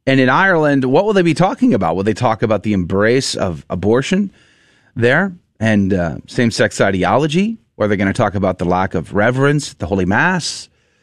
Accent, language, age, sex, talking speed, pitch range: American, English, 30-49, male, 200 wpm, 100-145 Hz